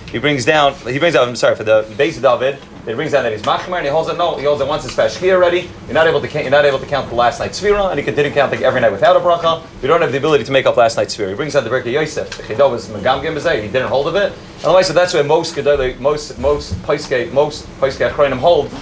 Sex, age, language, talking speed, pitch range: male, 30-49, English, 295 wpm, 125-165 Hz